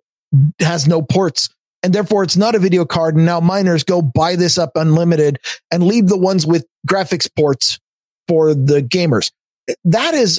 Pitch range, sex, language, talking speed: 140-175 Hz, male, English, 175 wpm